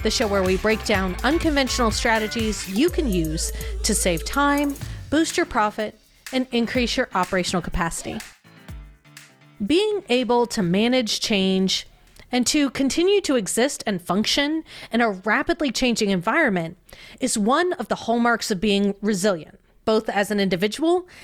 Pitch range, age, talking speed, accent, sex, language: 195-275 Hz, 30-49, 145 wpm, American, female, English